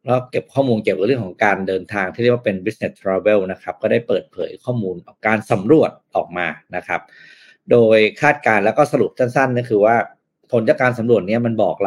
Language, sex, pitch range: Thai, male, 105-125 Hz